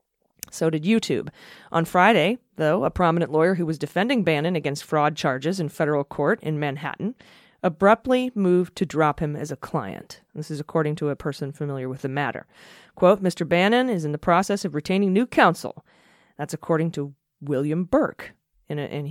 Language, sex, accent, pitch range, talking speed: English, female, American, 150-200 Hz, 175 wpm